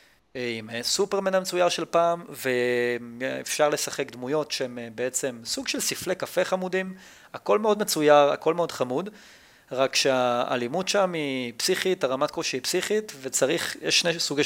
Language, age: Hebrew, 30-49